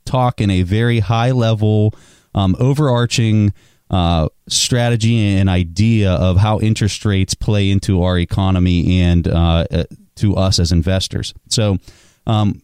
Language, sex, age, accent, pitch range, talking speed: English, male, 30-49, American, 90-110 Hz, 135 wpm